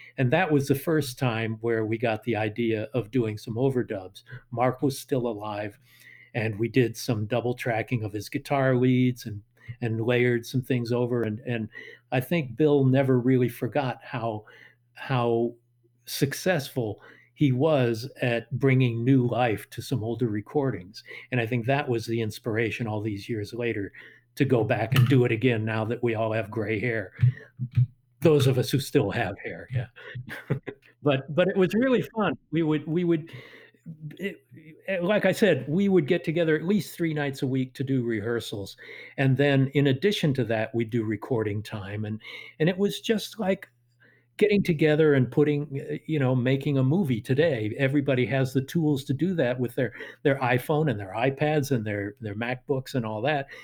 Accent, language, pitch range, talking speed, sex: American, English, 115-145 Hz, 185 wpm, male